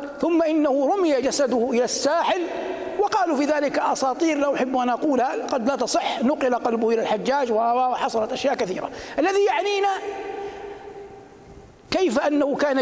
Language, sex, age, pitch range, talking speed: Arabic, male, 60-79, 210-310 Hz, 130 wpm